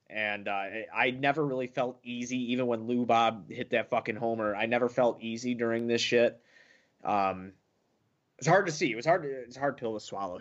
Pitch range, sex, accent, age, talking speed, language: 105-125 Hz, male, American, 20-39, 200 wpm, English